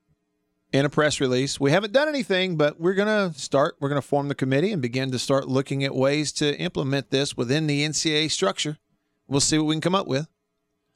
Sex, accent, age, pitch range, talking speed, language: male, American, 40-59, 115-160 Hz, 225 wpm, English